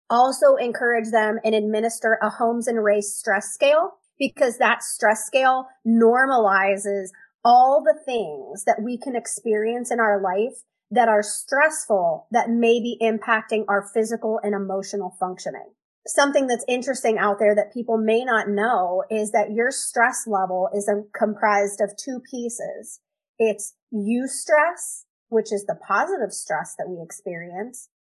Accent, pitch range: American, 210-265 Hz